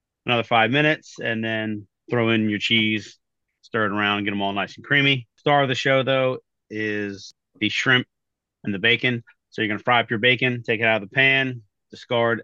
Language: English